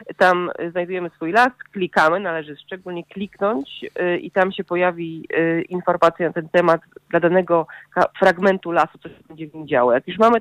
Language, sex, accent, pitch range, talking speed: Polish, female, native, 165-190 Hz, 185 wpm